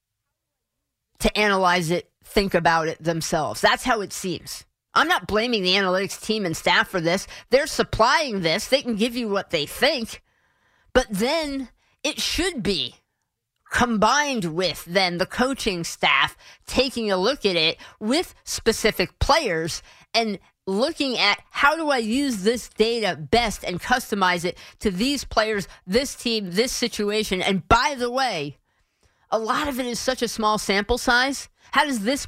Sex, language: female, English